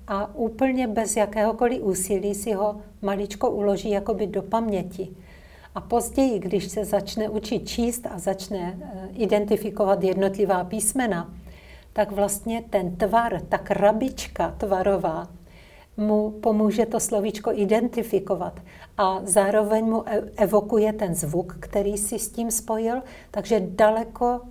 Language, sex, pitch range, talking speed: Czech, female, 190-215 Hz, 120 wpm